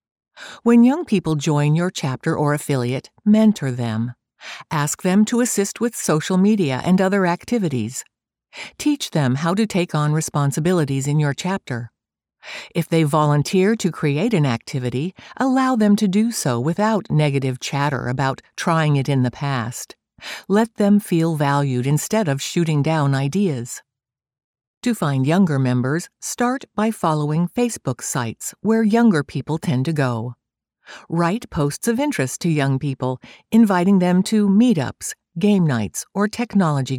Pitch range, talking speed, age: 140-205 Hz, 145 wpm, 60-79